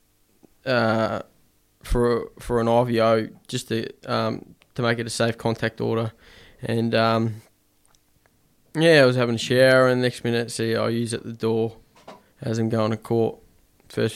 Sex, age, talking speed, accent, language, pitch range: male, 10-29, 170 wpm, Australian, English, 115-125 Hz